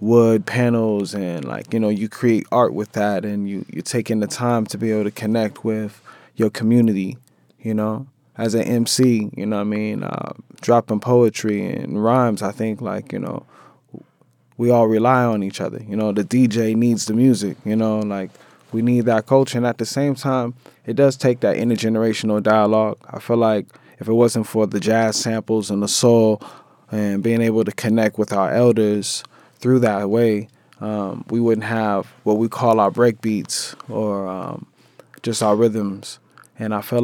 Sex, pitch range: male, 105-120 Hz